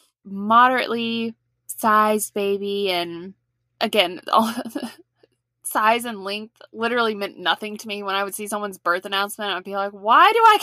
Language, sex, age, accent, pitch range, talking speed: English, female, 20-39, American, 195-245 Hz, 145 wpm